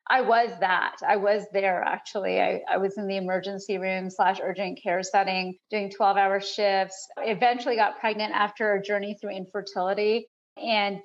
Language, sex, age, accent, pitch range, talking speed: English, female, 40-59, American, 195-235 Hz, 170 wpm